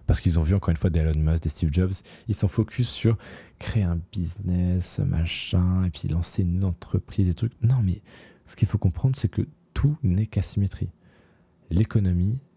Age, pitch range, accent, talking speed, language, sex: 20-39, 85-110 Hz, French, 190 wpm, French, male